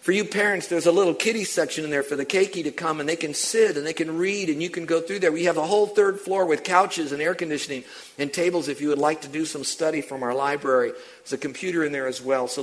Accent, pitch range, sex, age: American, 140-175 Hz, male, 50-69